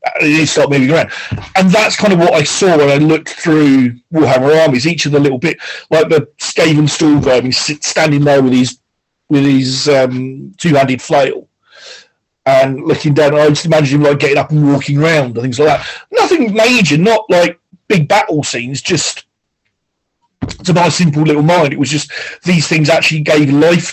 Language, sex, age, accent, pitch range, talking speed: English, male, 40-59, British, 135-160 Hz, 185 wpm